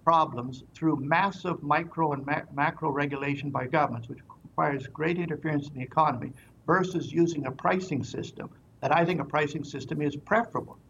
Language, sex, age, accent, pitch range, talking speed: English, male, 60-79, American, 140-170 Hz, 160 wpm